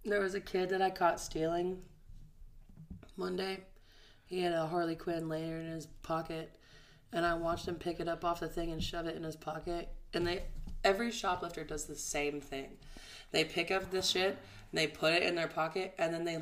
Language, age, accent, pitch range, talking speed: English, 20-39, American, 160-185 Hz, 210 wpm